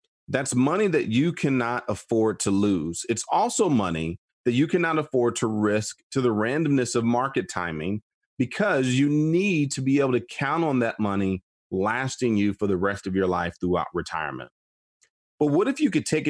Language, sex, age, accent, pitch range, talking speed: English, male, 30-49, American, 100-145 Hz, 185 wpm